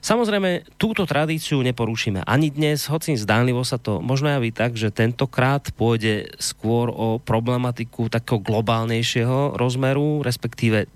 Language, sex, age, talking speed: Slovak, male, 30-49, 125 wpm